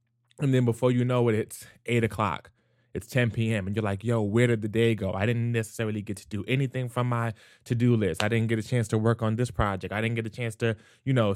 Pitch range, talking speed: 110-125 Hz, 265 wpm